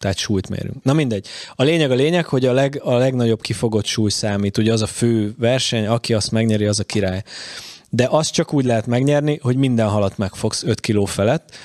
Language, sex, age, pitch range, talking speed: Hungarian, male, 20-39, 105-130 Hz, 210 wpm